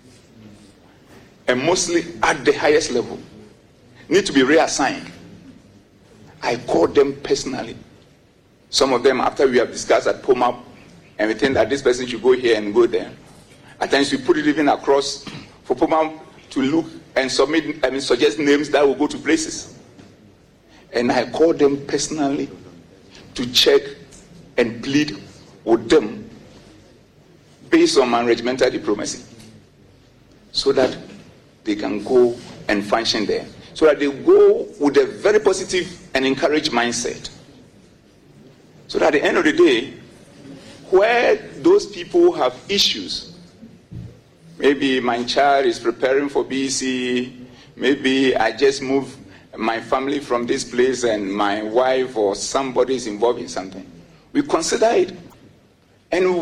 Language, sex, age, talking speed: English, male, 50-69, 145 wpm